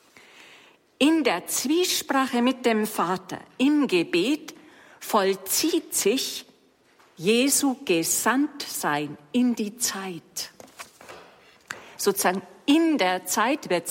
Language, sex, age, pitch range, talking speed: German, female, 50-69, 185-265 Hz, 85 wpm